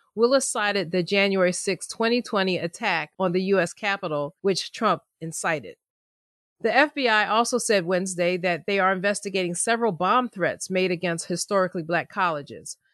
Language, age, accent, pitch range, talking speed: English, 40-59, American, 180-210 Hz, 145 wpm